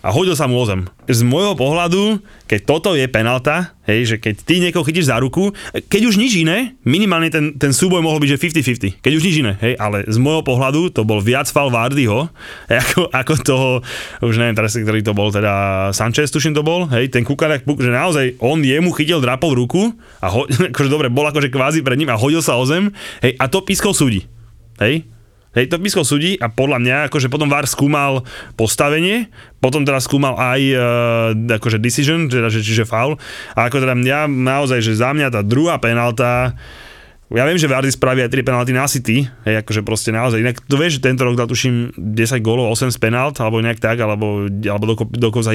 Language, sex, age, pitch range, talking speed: Slovak, male, 20-39, 115-150 Hz, 200 wpm